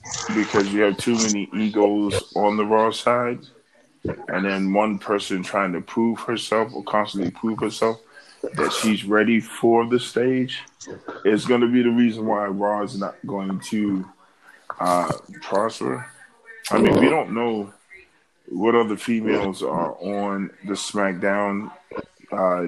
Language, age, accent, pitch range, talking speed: English, 20-39, American, 95-115 Hz, 145 wpm